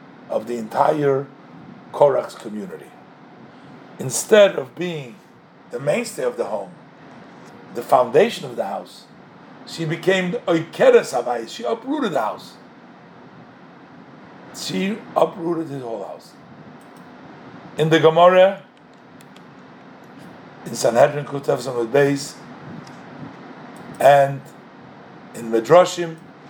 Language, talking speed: English, 95 wpm